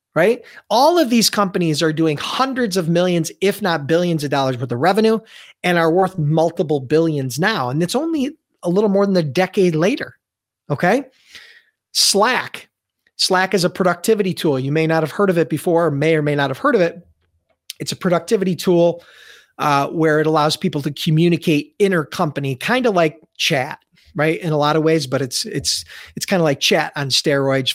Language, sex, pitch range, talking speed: English, male, 145-195 Hz, 190 wpm